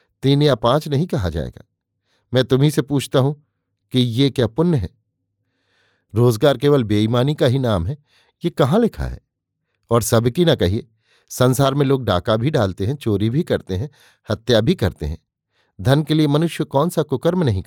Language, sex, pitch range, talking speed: Hindi, male, 110-145 Hz, 185 wpm